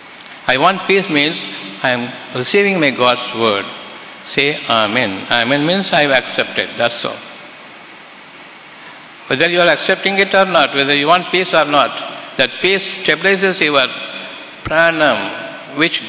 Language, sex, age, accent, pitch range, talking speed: Tamil, male, 60-79, native, 120-155 Hz, 140 wpm